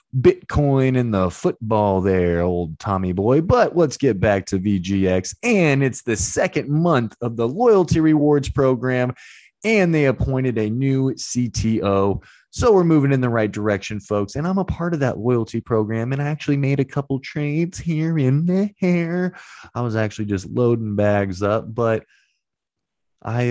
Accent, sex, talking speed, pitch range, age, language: American, male, 170 wpm, 105-135 Hz, 20-39, English